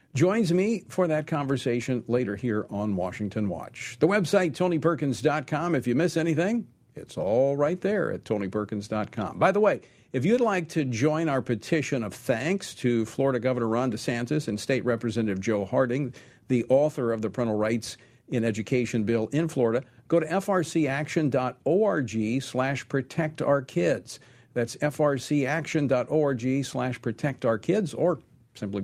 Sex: male